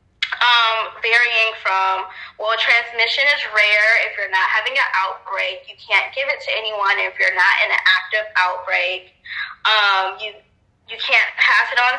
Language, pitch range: English, 185-250 Hz